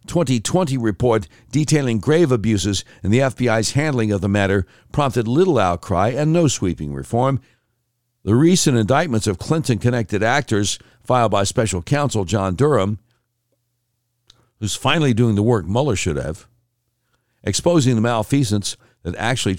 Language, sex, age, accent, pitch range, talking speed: English, male, 60-79, American, 105-135 Hz, 140 wpm